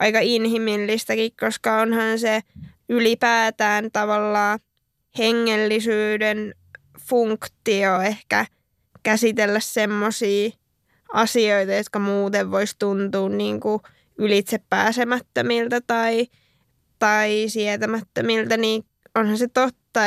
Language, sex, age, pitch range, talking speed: Finnish, female, 10-29, 215-245 Hz, 75 wpm